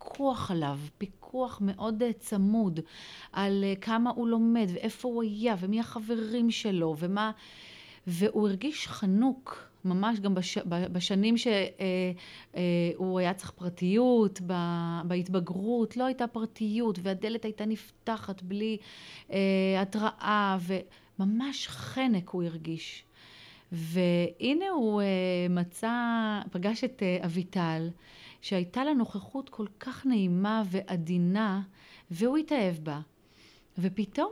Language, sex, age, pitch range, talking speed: Hebrew, female, 30-49, 180-225 Hz, 100 wpm